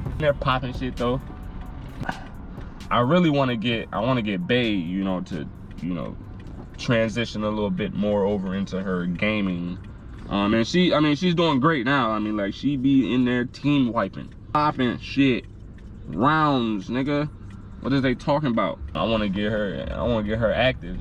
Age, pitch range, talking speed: 20-39, 95-150 Hz, 190 wpm